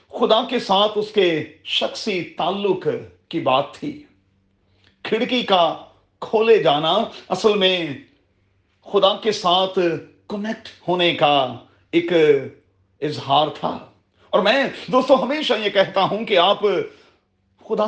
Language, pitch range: Urdu, 135-210 Hz